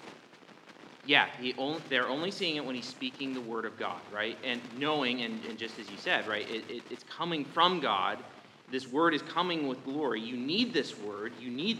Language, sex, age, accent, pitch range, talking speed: English, male, 30-49, American, 115-150 Hz, 195 wpm